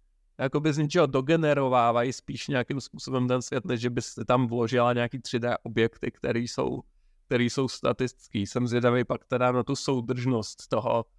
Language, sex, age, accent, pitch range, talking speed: Czech, male, 30-49, native, 120-135 Hz, 160 wpm